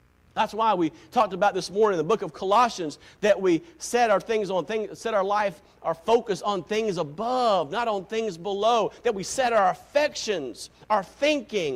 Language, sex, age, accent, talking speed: English, male, 50-69, American, 195 wpm